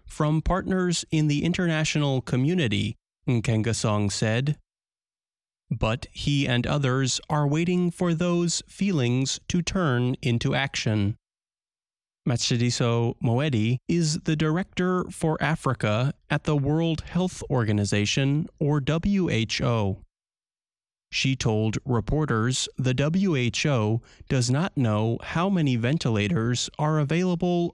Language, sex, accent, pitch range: English, male, American, 115-155 Hz